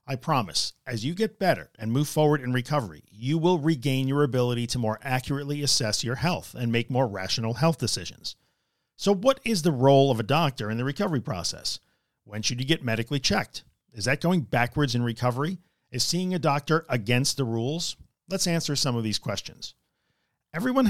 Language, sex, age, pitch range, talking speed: English, male, 50-69, 115-155 Hz, 190 wpm